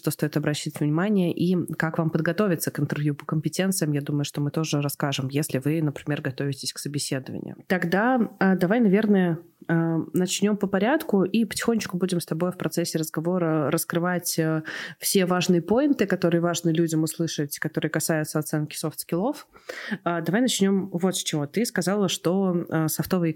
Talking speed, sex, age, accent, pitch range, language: 150 wpm, female, 20-39, native, 155-185 Hz, Russian